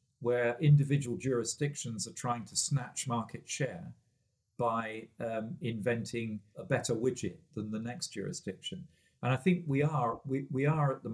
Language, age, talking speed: English, 50-69, 145 wpm